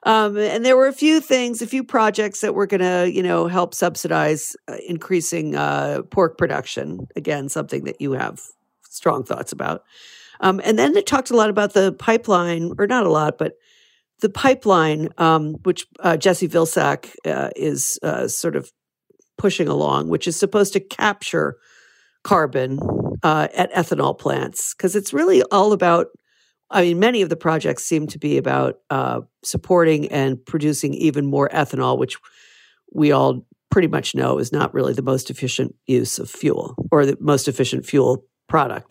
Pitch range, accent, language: 145-210 Hz, American, English